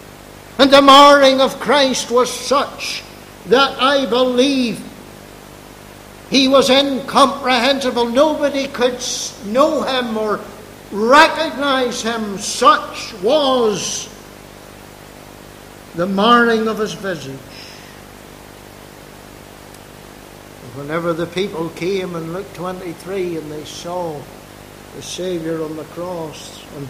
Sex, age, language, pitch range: male, 60-79, English, 160-220 Hz